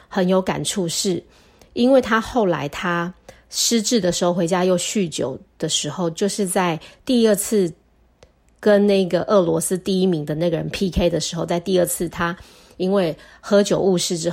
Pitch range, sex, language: 165-190 Hz, female, Chinese